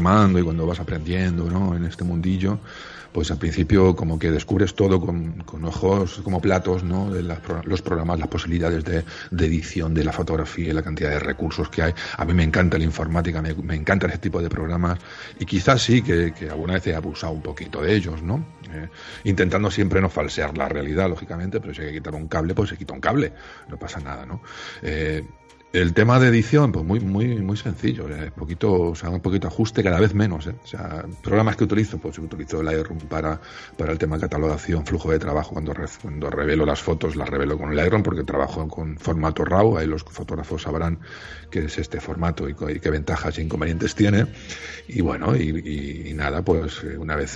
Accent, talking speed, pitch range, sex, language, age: Spanish, 215 wpm, 80-95 Hz, male, Spanish, 40-59